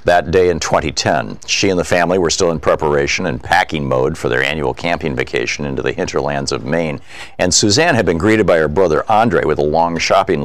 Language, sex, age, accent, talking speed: English, male, 50-69, American, 220 wpm